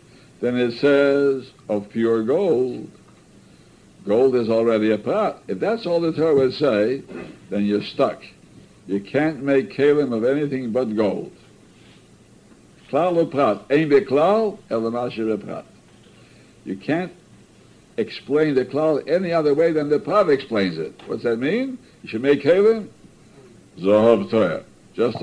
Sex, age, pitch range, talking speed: male, 60-79, 115-155 Hz, 125 wpm